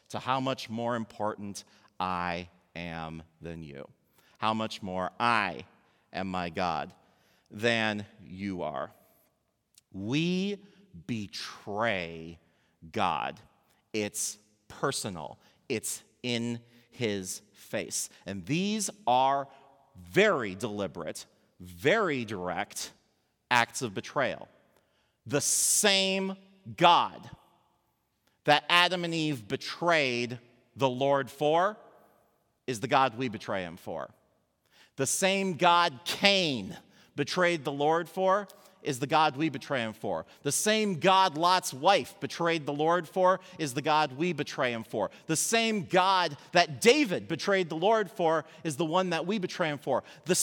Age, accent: 40-59, American